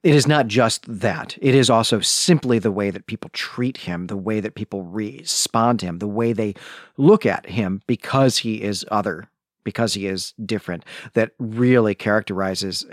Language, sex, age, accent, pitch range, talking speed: English, male, 40-59, American, 105-130 Hz, 180 wpm